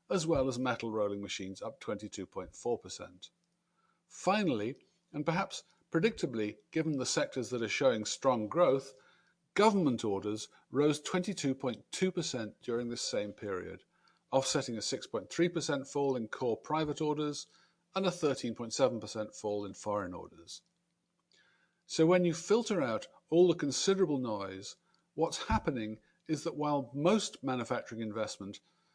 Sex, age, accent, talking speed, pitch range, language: male, 50-69, British, 125 wpm, 115-170 Hz, English